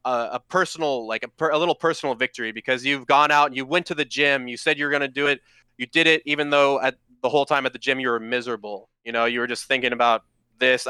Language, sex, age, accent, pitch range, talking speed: English, male, 20-39, American, 120-145 Hz, 270 wpm